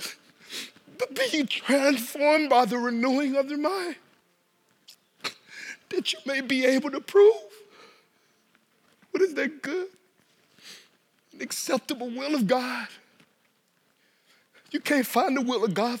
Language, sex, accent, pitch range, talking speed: English, male, American, 225-285 Hz, 115 wpm